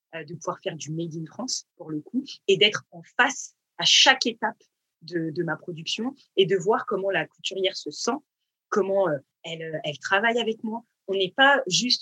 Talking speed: 195 wpm